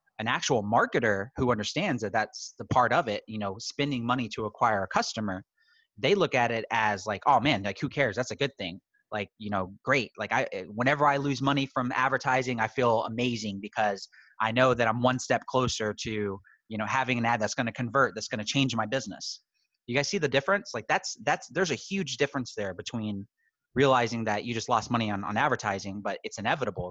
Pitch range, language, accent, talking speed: 105-130 Hz, English, American, 220 wpm